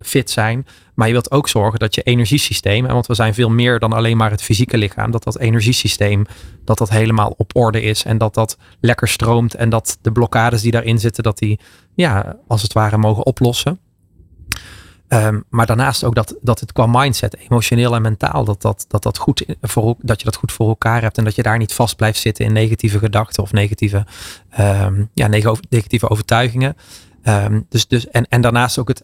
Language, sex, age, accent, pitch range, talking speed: Dutch, male, 20-39, Dutch, 105-120 Hz, 210 wpm